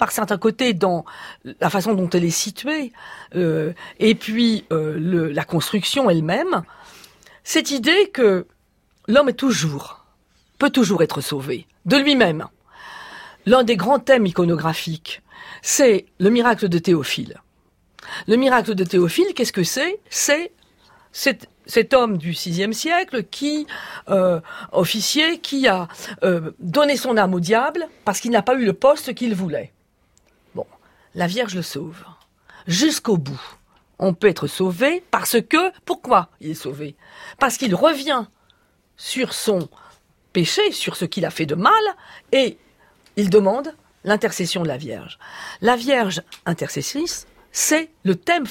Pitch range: 180-275 Hz